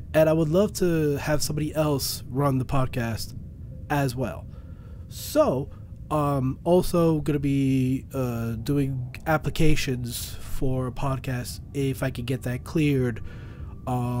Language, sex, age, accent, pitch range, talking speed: English, male, 20-39, American, 115-150 Hz, 140 wpm